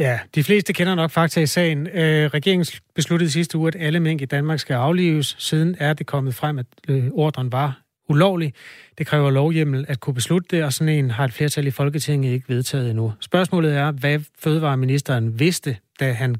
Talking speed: 200 wpm